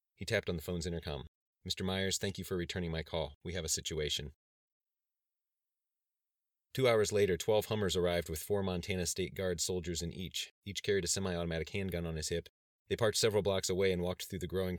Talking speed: 205 wpm